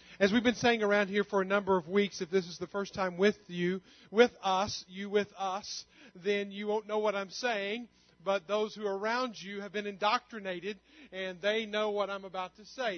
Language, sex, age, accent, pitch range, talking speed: English, male, 40-59, American, 185-215 Hz, 220 wpm